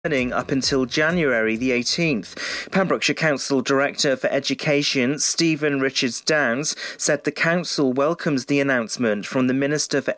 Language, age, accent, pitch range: English, 40-59, British, 130-155 Hz